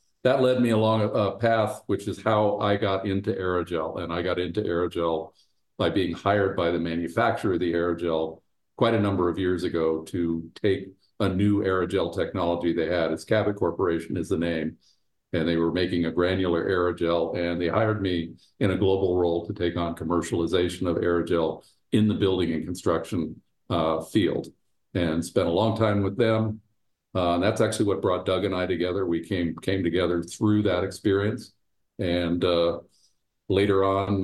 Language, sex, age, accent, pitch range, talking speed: English, male, 50-69, American, 85-100 Hz, 180 wpm